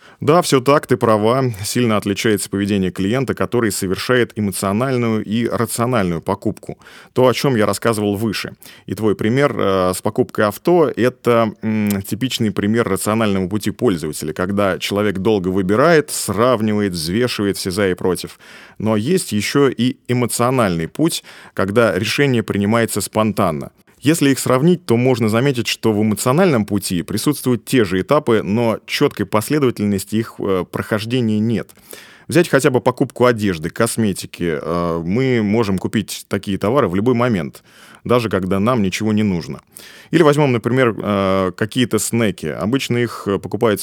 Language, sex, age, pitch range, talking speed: Russian, male, 30-49, 100-120 Hz, 140 wpm